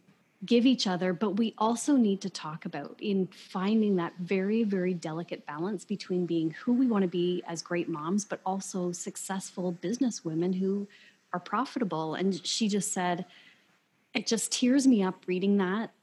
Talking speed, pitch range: 170 wpm, 175-215 Hz